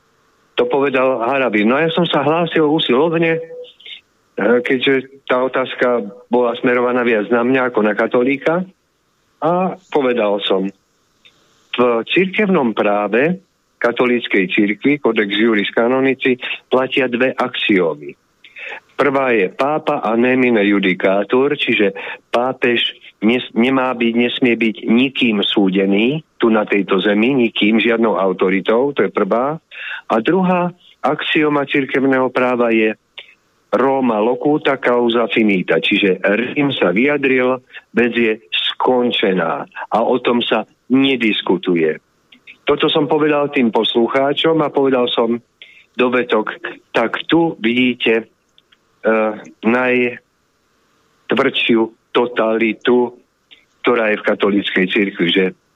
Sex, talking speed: male, 110 wpm